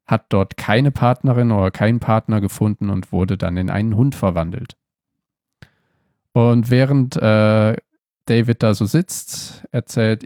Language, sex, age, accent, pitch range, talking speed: German, male, 40-59, German, 105-130 Hz, 135 wpm